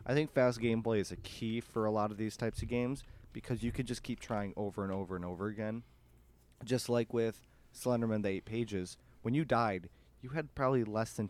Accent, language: American, English